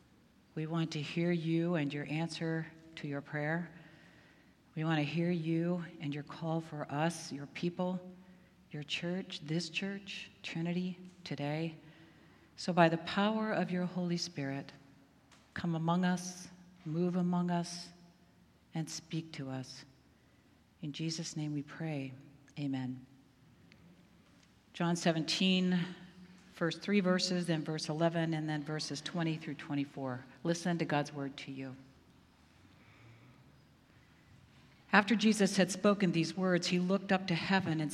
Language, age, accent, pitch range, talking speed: English, 50-69, American, 150-180 Hz, 135 wpm